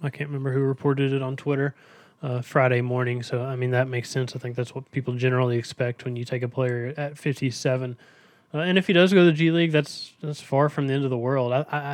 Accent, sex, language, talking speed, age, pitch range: American, male, English, 255 wpm, 20-39, 125-140 Hz